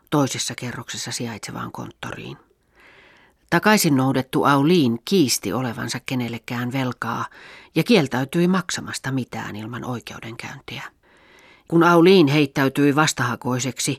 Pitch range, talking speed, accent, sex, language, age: 125-165 Hz, 90 wpm, native, female, Finnish, 40-59